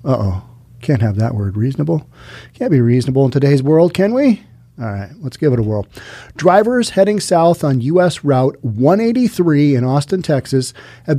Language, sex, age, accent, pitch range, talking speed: English, male, 40-59, American, 130-185 Hz, 175 wpm